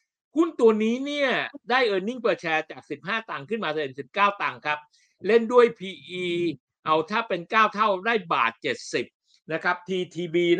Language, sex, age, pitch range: Thai, male, 60-79, 155-220 Hz